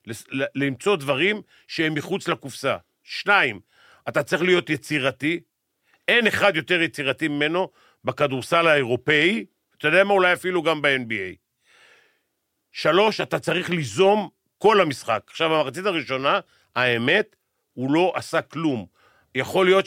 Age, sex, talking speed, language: 50-69, male, 120 wpm, Hebrew